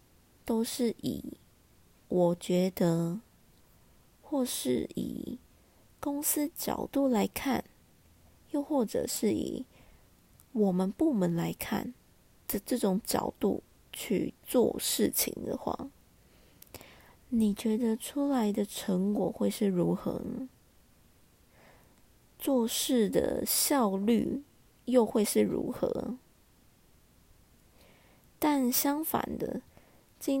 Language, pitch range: Chinese, 200-255 Hz